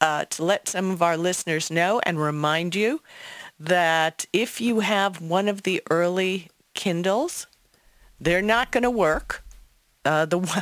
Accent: American